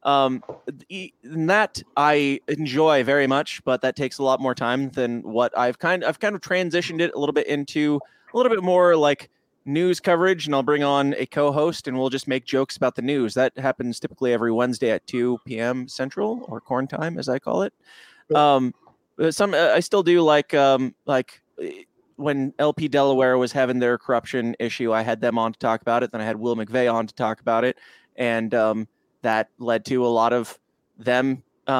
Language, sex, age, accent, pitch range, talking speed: English, male, 20-39, American, 125-155 Hz, 200 wpm